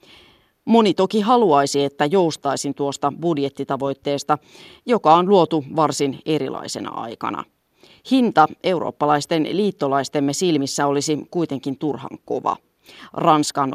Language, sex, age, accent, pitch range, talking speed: Finnish, female, 30-49, native, 140-180 Hz, 95 wpm